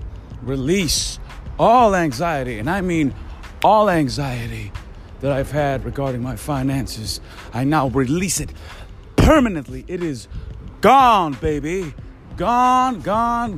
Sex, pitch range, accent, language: male, 100-165 Hz, American, English